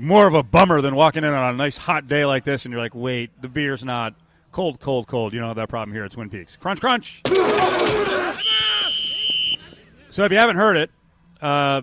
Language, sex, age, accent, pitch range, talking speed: English, male, 30-49, American, 125-165 Hz, 215 wpm